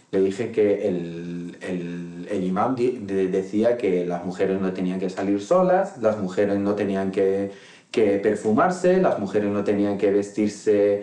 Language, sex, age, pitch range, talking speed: English, male, 40-59, 100-140 Hz, 165 wpm